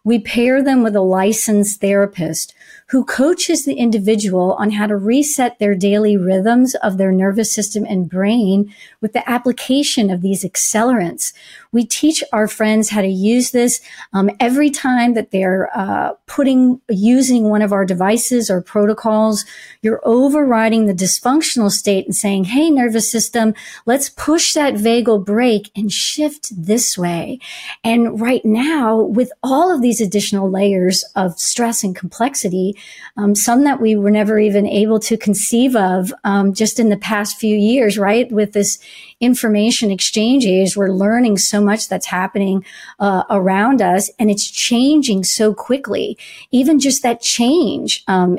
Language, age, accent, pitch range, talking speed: English, 40-59, American, 200-245 Hz, 155 wpm